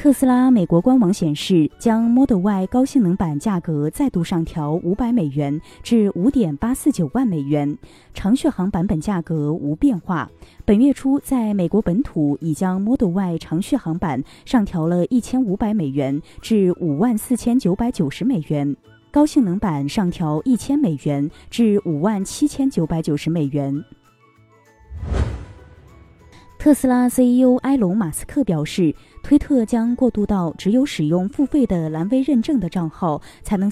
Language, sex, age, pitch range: Chinese, female, 20-39, 155-245 Hz